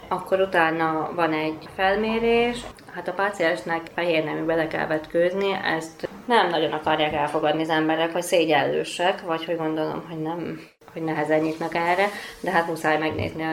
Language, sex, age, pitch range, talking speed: Hungarian, female, 20-39, 160-180 Hz, 155 wpm